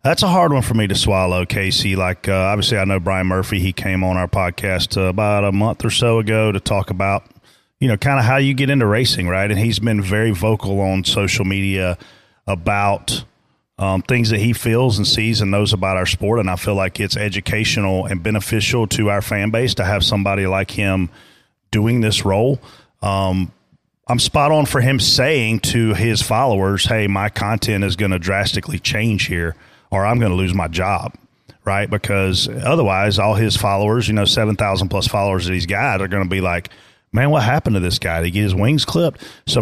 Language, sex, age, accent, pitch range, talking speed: English, male, 30-49, American, 95-115 Hz, 210 wpm